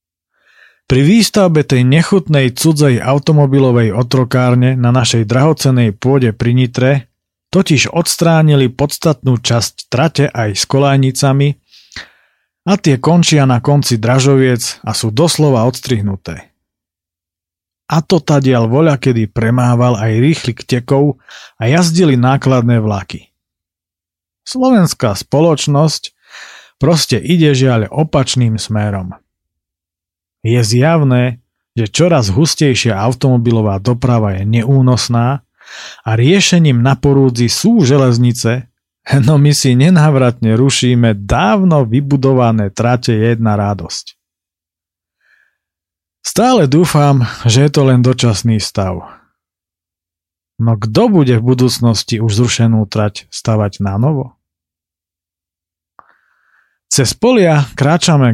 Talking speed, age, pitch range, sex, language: 100 wpm, 40-59, 105-140 Hz, male, Slovak